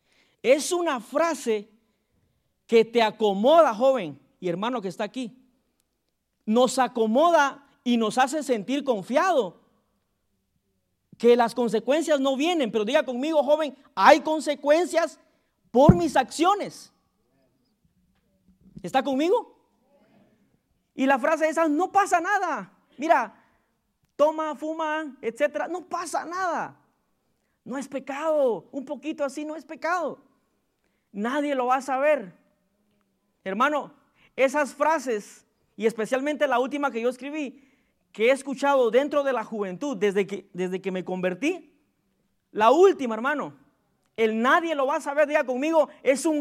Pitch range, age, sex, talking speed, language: 225-305 Hz, 40-59, male, 130 wpm, Spanish